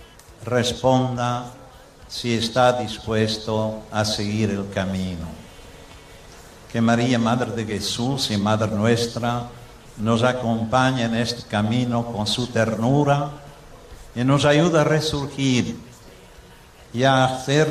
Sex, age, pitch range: male, 60-79, 115-135 Hz